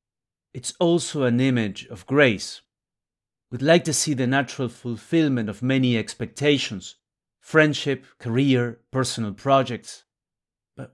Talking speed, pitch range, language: 115 wpm, 120-150 Hz, English